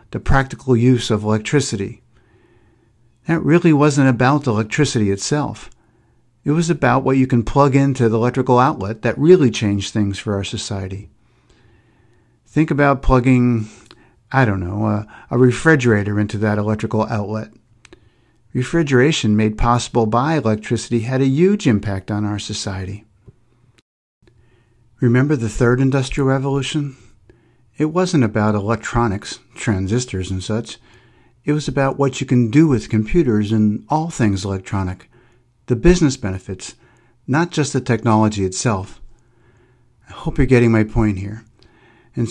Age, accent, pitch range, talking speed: 50-69, American, 110-135 Hz, 135 wpm